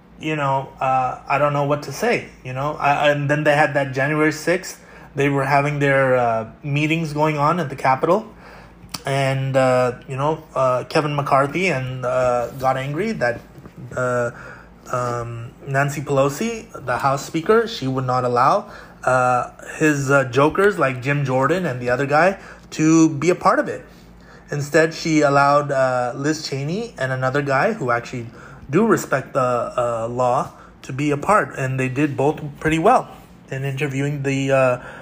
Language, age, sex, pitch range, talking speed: English, 20-39, male, 130-155 Hz, 170 wpm